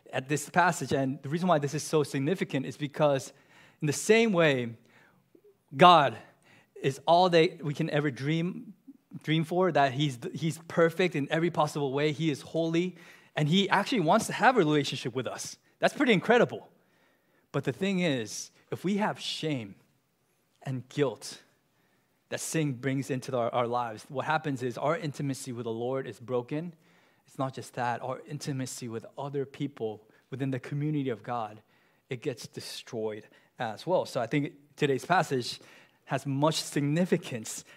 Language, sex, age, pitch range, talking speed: English, male, 20-39, 135-175 Hz, 165 wpm